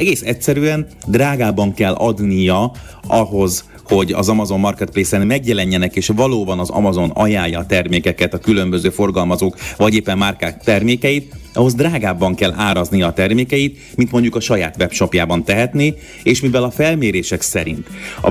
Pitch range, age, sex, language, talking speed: 95-120 Hz, 30-49, male, Hungarian, 140 wpm